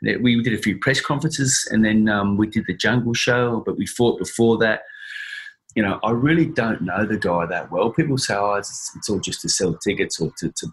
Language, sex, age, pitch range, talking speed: English, male, 30-49, 90-120 Hz, 230 wpm